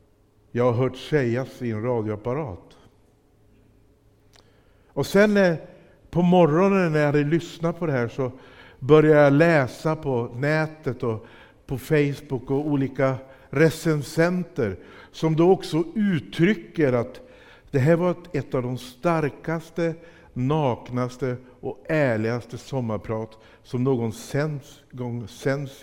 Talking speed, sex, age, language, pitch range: 115 wpm, male, 60-79, Swedish, 110-160 Hz